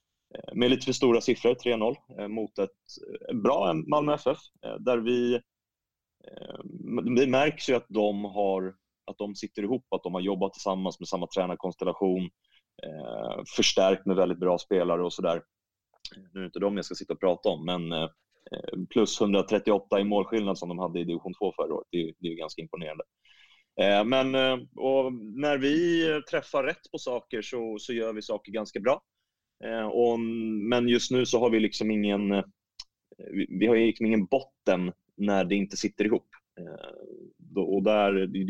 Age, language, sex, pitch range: 30-49, English, male, 95-120 Hz